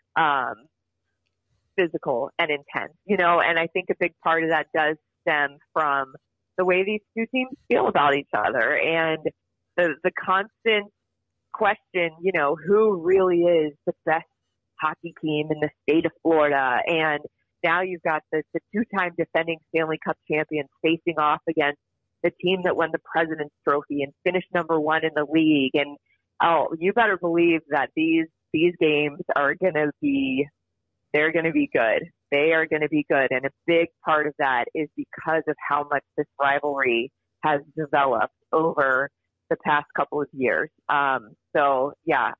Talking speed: 165 wpm